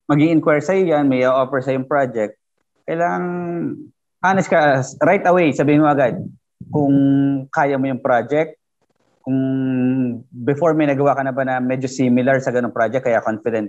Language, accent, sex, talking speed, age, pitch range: Filipino, native, male, 160 wpm, 20-39, 125-150 Hz